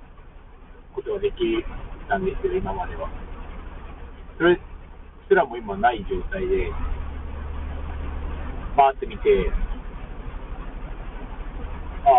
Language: Japanese